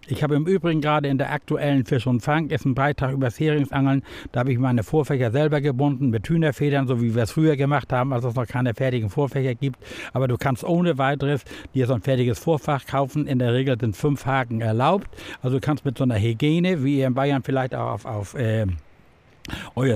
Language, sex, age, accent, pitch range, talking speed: German, male, 60-79, German, 120-145 Hz, 225 wpm